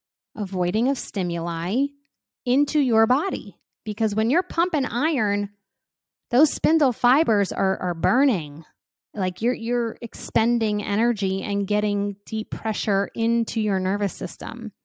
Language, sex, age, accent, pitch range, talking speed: English, female, 30-49, American, 195-240 Hz, 120 wpm